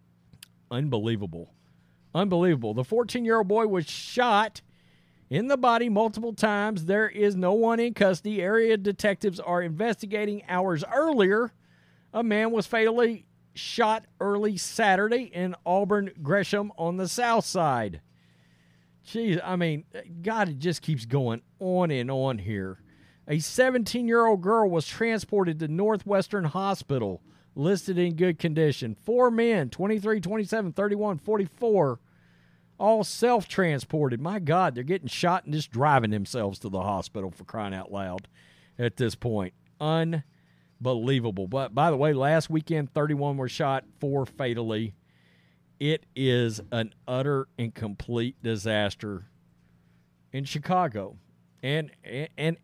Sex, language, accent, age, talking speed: male, English, American, 50-69, 130 wpm